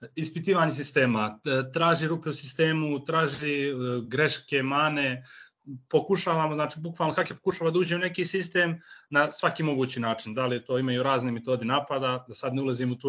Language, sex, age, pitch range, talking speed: Croatian, male, 30-49, 130-165 Hz, 165 wpm